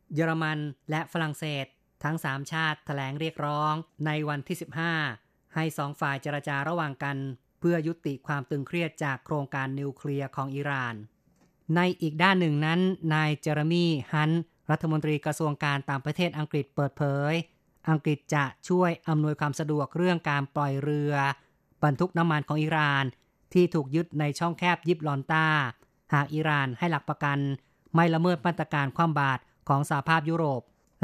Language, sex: Thai, female